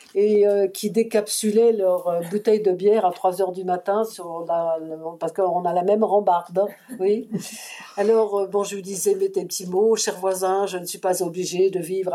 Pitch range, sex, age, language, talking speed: 185-240 Hz, female, 50-69, French, 210 wpm